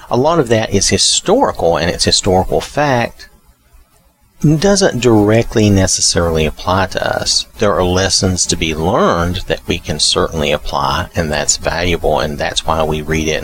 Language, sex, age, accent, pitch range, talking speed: English, male, 40-59, American, 75-100 Hz, 160 wpm